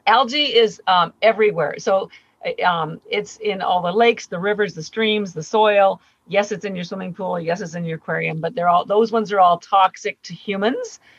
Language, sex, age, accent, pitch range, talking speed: English, female, 50-69, American, 185-230 Hz, 205 wpm